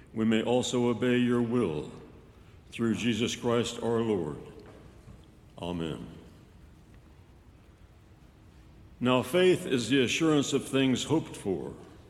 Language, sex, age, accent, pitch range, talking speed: English, male, 60-79, American, 110-135 Hz, 105 wpm